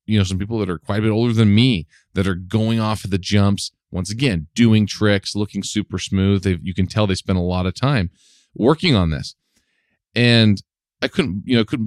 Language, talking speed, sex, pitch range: English, 220 wpm, male, 95-120 Hz